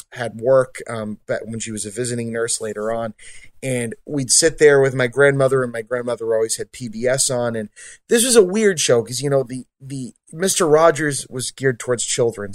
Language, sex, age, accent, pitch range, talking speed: English, male, 30-49, American, 115-145 Hz, 205 wpm